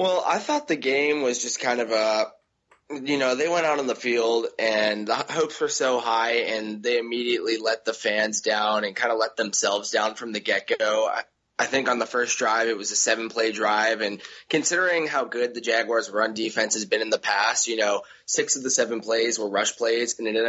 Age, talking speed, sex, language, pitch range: 20-39, 230 wpm, male, English, 110-125 Hz